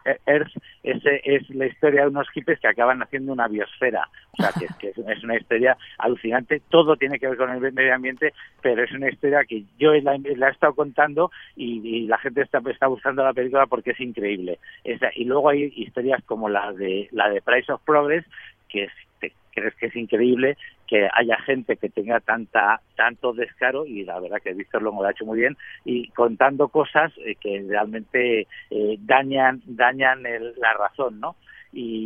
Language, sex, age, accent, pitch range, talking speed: Spanish, male, 60-79, Spanish, 110-140 Hz, 195 wpm